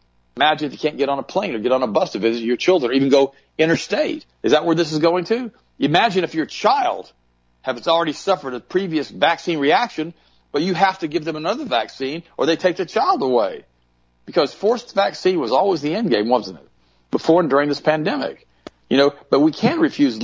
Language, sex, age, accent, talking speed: English, male, 50-69, American, 220 wpm